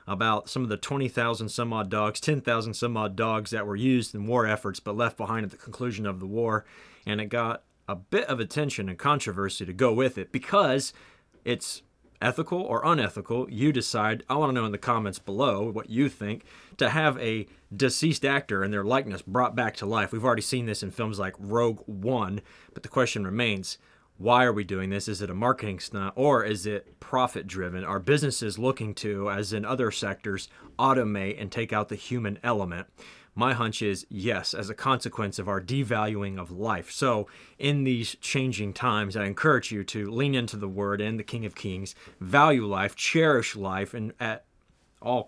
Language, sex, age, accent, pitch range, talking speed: English, male, 30-49, American, 100-130 Hz, 195 wpm